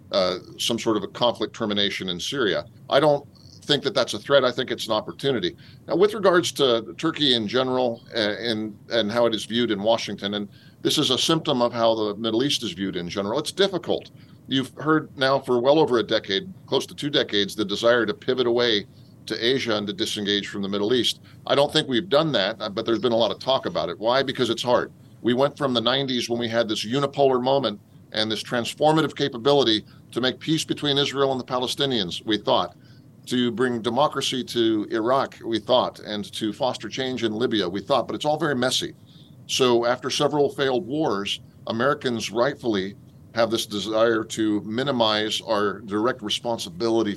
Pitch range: 110-140 Hz